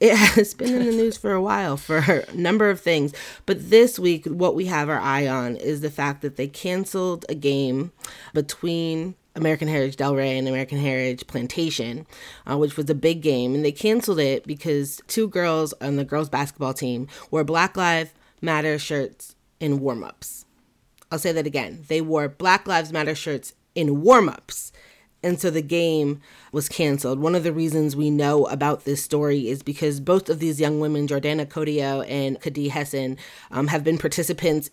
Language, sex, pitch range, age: English, female, 135-160 Hz, 30-49